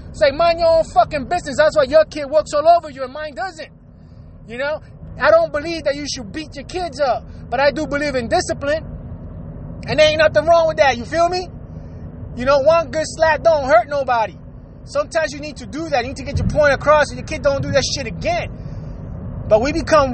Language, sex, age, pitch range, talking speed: English, male, 20-39, 235-305 Hz, 235 wpm